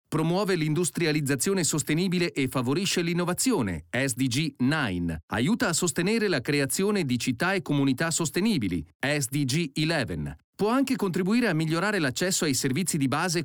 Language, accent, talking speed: Italian, native, 135 wpm